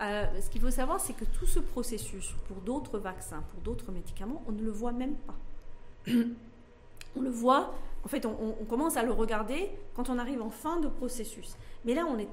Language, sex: French, female